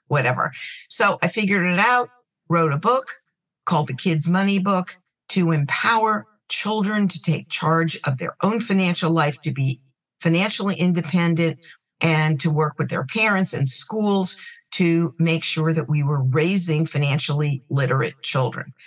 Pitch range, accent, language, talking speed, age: 150-185 Hz, American, English, 150 wpm, 50-69